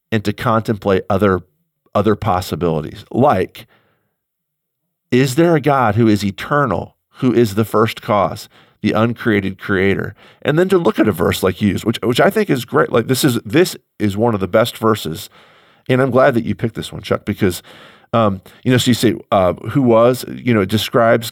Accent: American